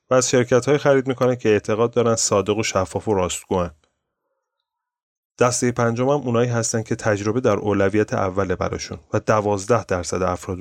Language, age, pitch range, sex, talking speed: Persian, 30-49, 95-130 Hz, male, 165 wpm